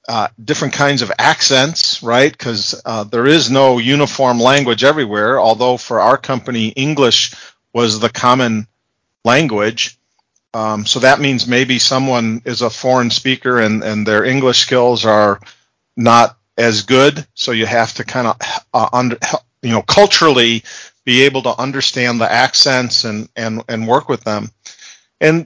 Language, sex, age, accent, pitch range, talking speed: English, male, 40-59, American, 115-150 Hz, 155 wpm